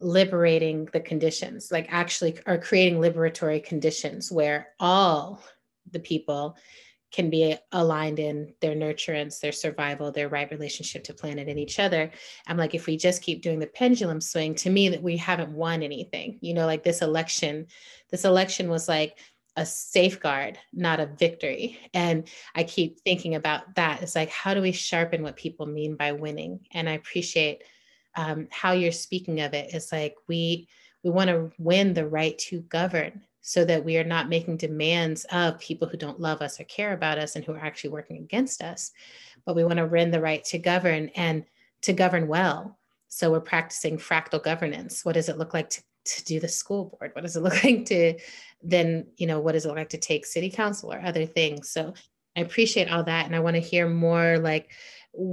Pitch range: 155-180 Hz